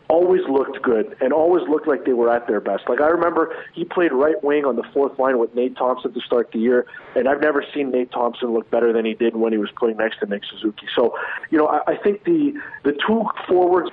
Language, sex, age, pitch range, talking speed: English, male, 40-59, 125-165 Hz, 255 wpm